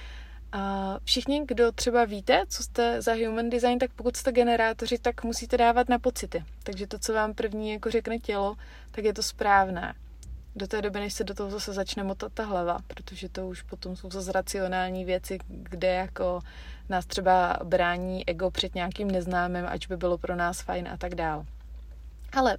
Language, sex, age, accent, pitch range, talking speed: Czech, female, 30-49, native, 180-215 Hz, 185 wpm